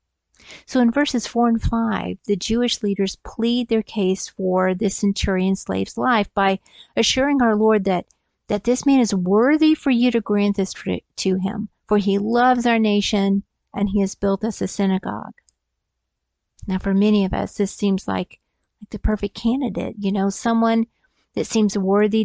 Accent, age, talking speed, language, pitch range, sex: American, 50-69, 170 wpm, English, 195-230 Hz, female